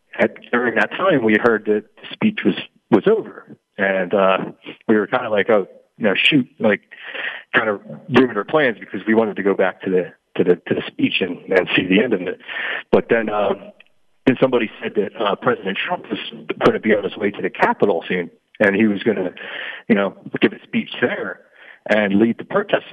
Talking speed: 220 wpm